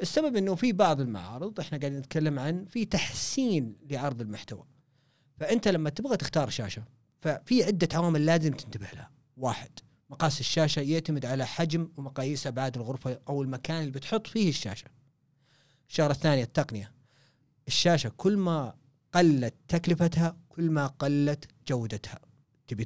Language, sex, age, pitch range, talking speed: Arabic, male, 40-59, 135-175 Hz, 135 wpm